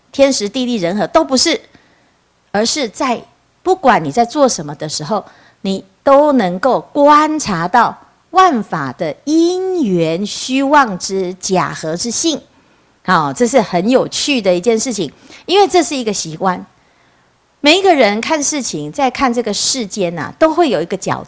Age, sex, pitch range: 50-69, female, 195-280 Hz